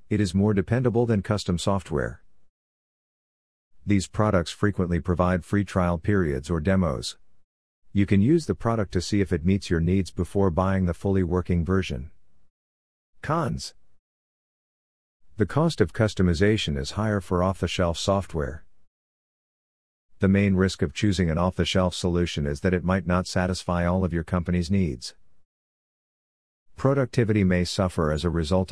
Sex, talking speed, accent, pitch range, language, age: male, 145 wpm, American, 85-100 Hz, English, 50-69